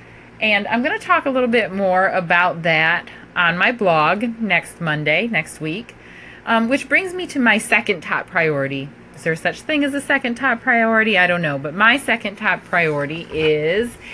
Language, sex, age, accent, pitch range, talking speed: English, female, 30-49, American, 165-230 Hz, 185 wpm